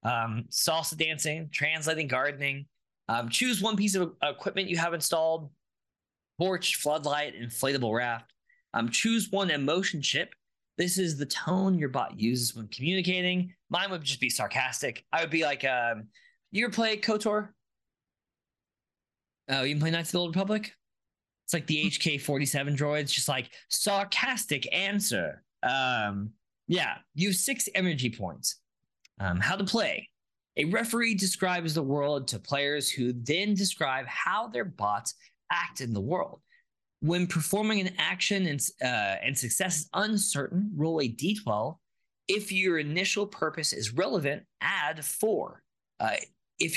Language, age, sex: English, 20-39, male